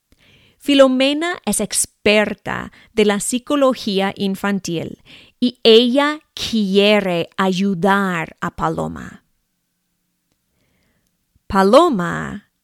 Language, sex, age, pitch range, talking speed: English, female, 30-49, 195-255 Hz, 65 wpm